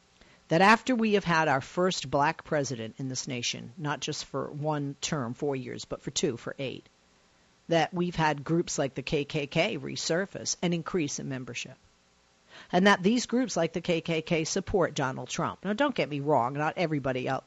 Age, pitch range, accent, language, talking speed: 50-69, 130-195 Hz, American, English, 185 wpm